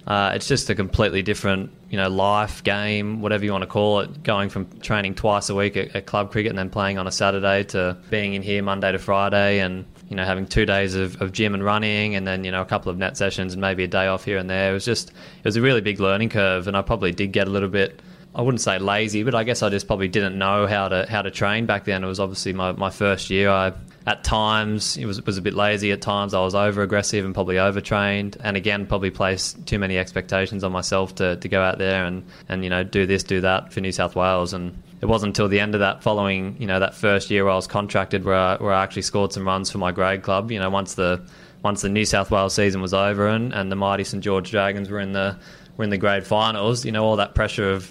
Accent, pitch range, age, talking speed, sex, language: Australian, 95-105 Hz, 20-39, 275 wpm, male, English